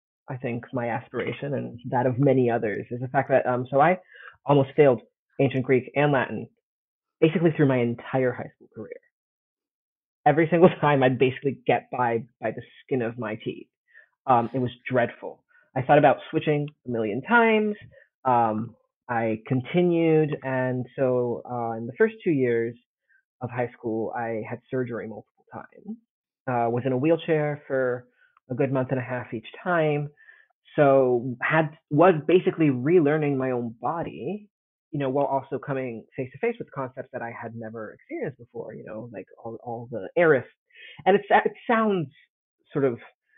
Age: 30-49